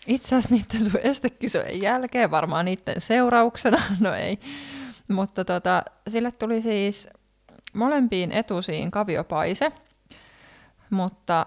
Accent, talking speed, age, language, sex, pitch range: native, 100 wpm, 20-39, Finnish, female, 175-210 Hz